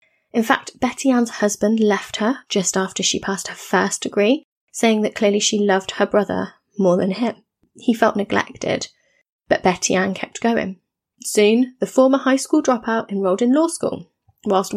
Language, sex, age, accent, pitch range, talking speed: English, female, 30-49, British, 195-245 Hz, 175 wpm